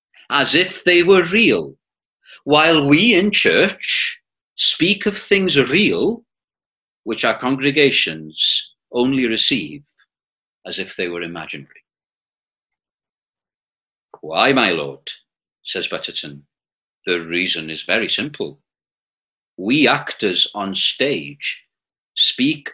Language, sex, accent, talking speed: English, male, British, 100 wpm